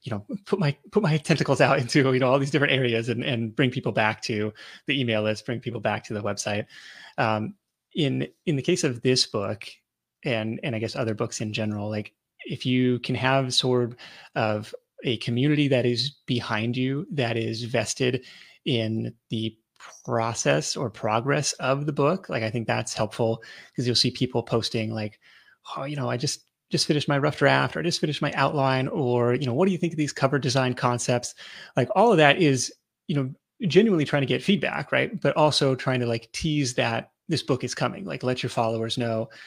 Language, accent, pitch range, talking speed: English, American, 115-145 Hz, 210 wpm